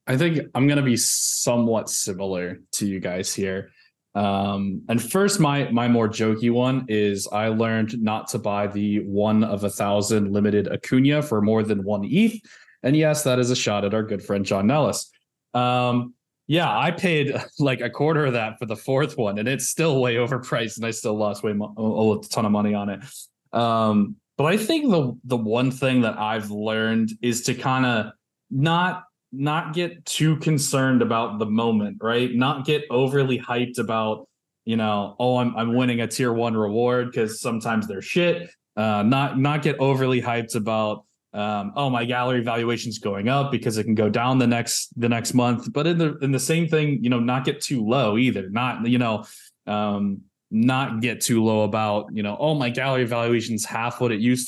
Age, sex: 20-39, male